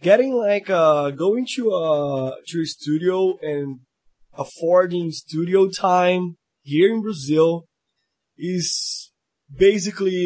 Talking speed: 110 wpm